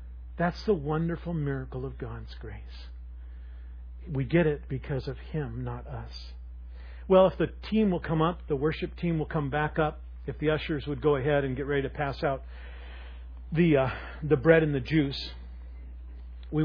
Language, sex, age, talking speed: English, male, 40-59, 175 wpm